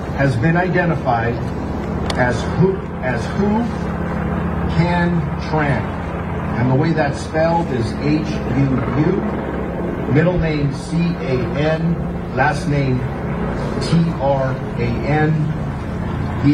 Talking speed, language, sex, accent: 110 wpm, English, male, American